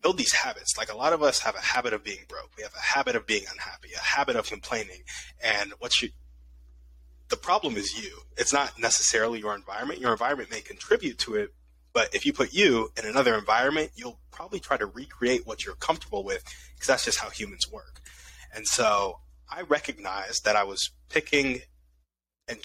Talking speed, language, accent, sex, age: 195 wpm, English, American, male, 20-39